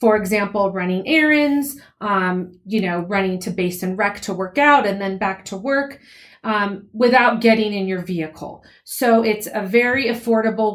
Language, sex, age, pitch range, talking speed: English, female, 30-49, 195-230 Hz, 175 wpm